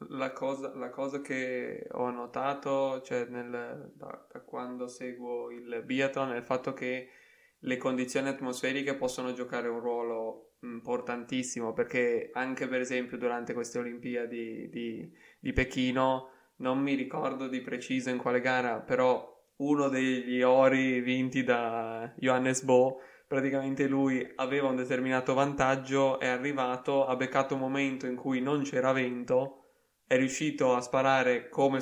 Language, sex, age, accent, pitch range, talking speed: Italian, male, 20-39, native, 125-135 Hz, 135 wpm